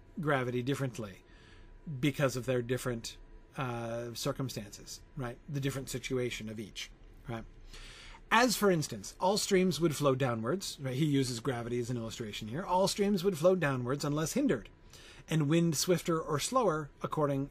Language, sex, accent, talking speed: English, male, American, 150 wpm